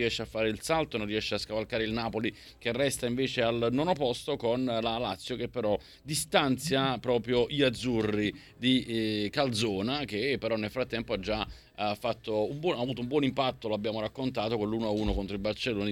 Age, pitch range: 30-49, 110-140 Hz